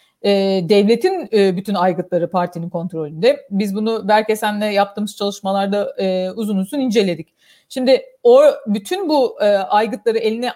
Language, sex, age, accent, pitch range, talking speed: Turkish, female, 40-59, native, 195-270 Hz, 130 wpm